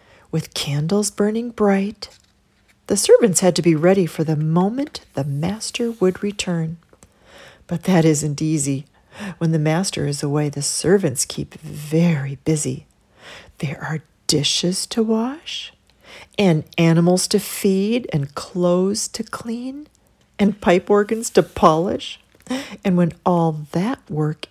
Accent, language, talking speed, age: American, English, 130 wpm, 40-59